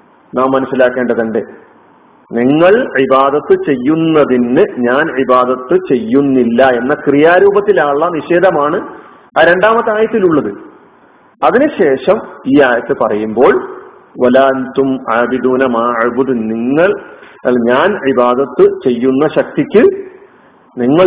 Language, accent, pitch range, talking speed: Malayalam, native, 125-185 Hz, 70 wpm